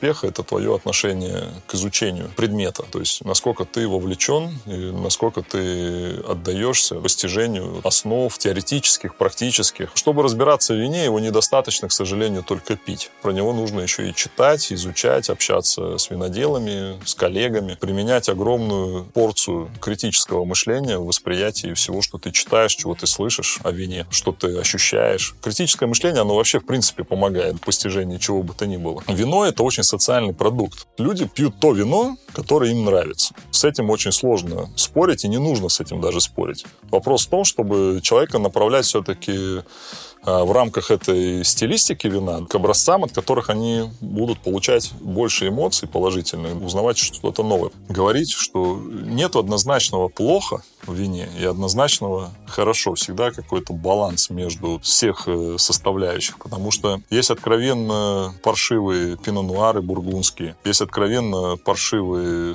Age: 30-49